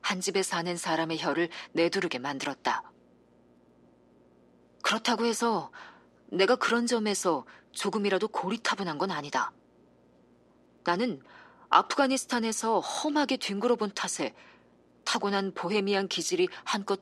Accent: native